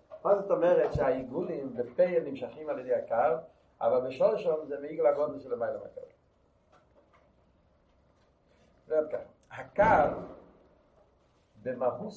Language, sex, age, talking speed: Hebrew, male, 60-79, 105 wpm